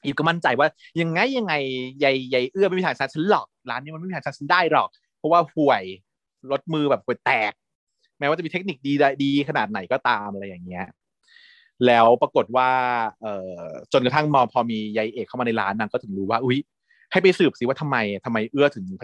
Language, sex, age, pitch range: Thai, male, 30-49, 120-170 Hz